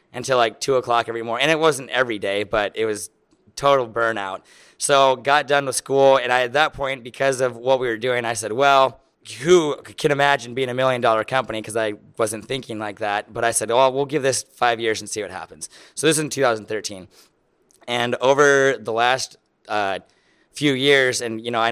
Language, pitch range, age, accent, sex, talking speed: English, 110-130 Hz, 20-39, American, male, 210 wpm